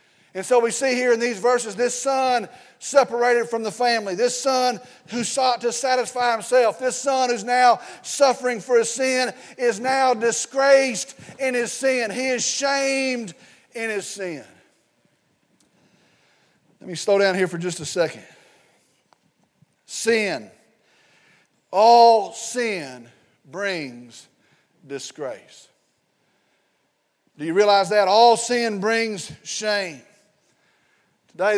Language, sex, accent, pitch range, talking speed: English, male, American, 215-245 Hz, 120 wpm